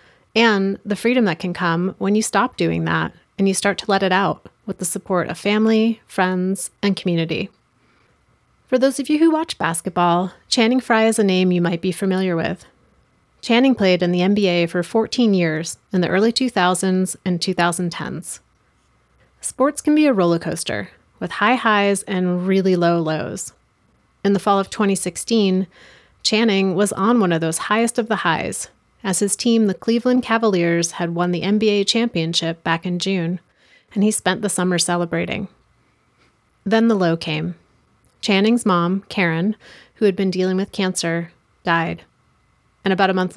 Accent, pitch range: American, 175-215 Hz